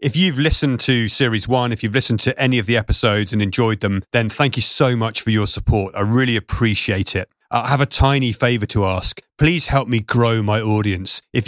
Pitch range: 105-125 Hz